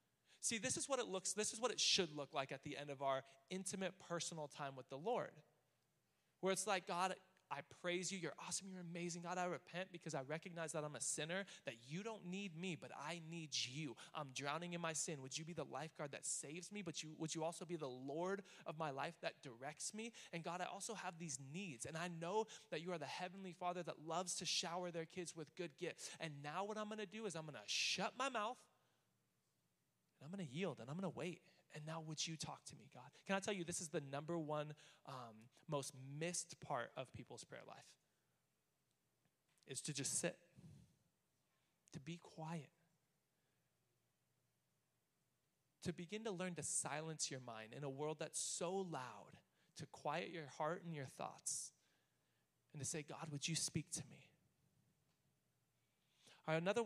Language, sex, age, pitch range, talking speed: English, male, 20-39, 145-180 Hz, 200 wpm